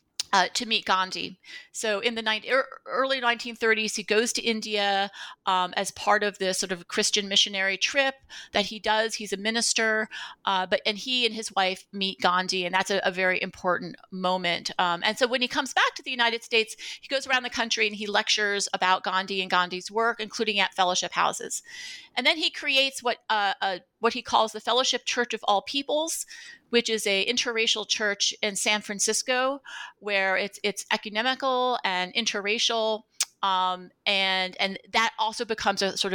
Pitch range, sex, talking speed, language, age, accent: 195-240 Hz, female, 185 wpm, English, 30-49, American